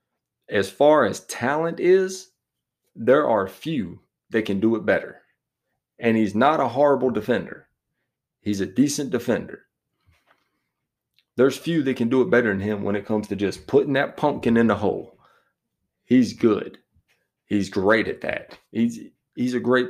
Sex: male